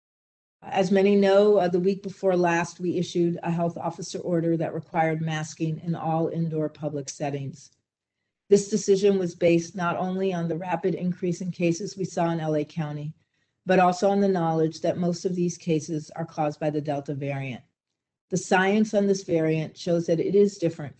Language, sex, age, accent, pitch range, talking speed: English, female, 50-69, American, 155-190 Hz, 185 wpm